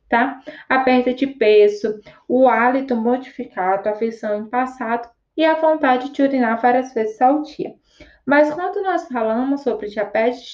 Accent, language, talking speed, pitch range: Brazilian, Portuguese, 150 wpm, 215-280 Hz